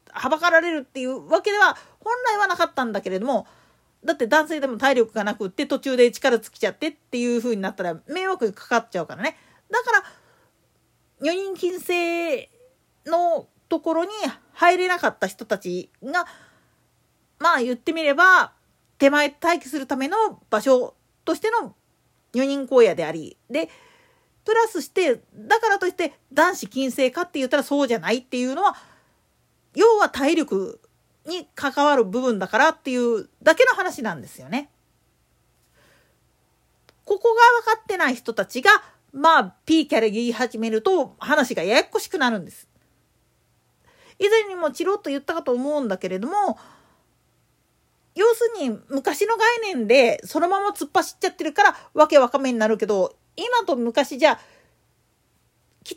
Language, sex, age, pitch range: Japanese, female, 40-59, 255-380 Hz